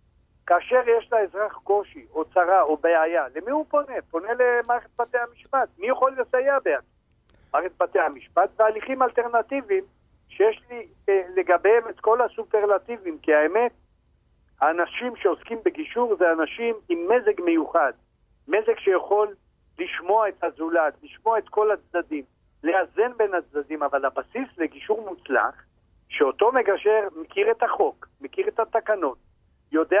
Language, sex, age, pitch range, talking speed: Hebrew, male, 50-69, 175-260 Hz, 130 wpm